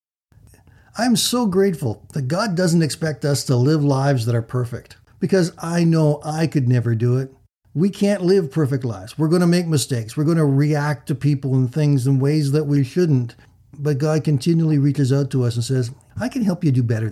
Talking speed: 210 wpm